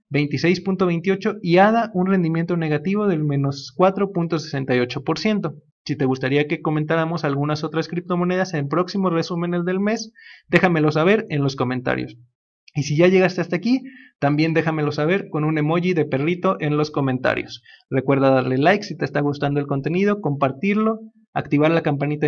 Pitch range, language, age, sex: 140-180 Hz, Spanish, 30-49, male